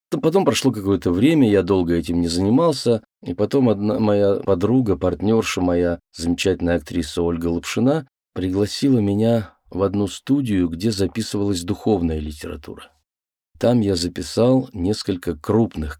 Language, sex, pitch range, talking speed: Russian, male, 85-110 Hz, 130 wpm